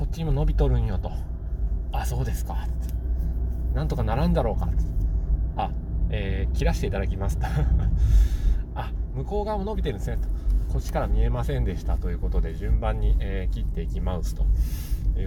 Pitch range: 80-115 Hz